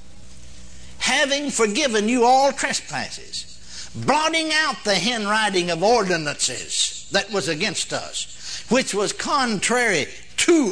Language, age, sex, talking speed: English, 60-79, male, 105 wpm